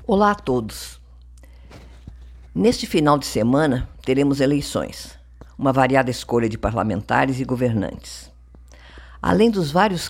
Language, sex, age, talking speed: Portuguese, female, 50-69, 115 wpm